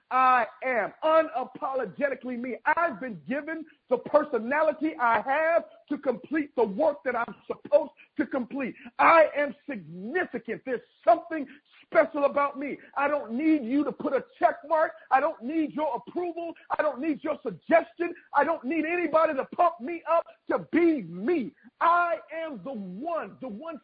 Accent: American